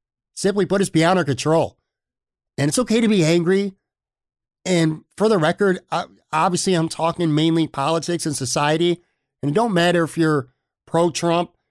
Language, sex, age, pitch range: English, male, 50-69, 120-160 Hz